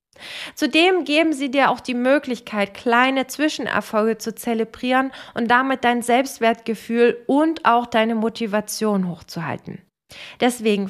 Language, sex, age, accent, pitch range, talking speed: German, female, 20-39, German, 215-290 Hz, 115 wpm